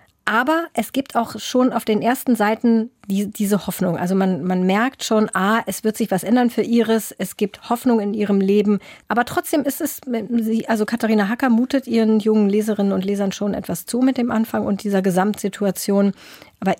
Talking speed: 195 wpm